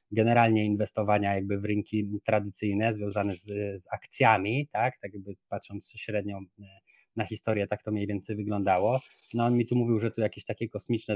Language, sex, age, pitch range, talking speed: Polish, male, 20-39, 110-140 Hz, 170 wpm